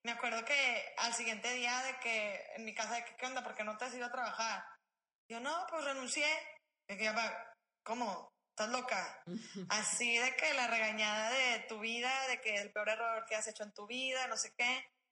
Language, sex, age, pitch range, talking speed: Spanish, female, 20-39, 210-250 Hz, 205 wpm